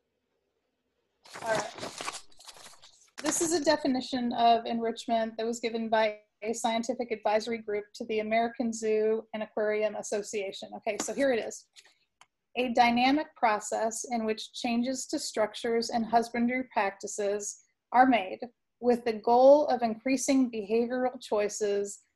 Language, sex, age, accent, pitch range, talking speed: English, female, 30-49, American, 220-255 Hz, 130 wpm